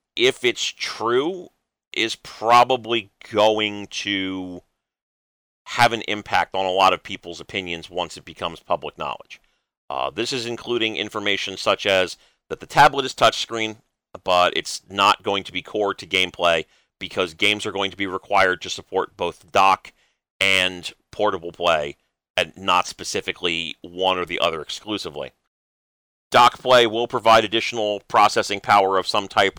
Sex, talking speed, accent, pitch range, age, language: male, 150 wpm, American, 90-120 Hz, 40-59, English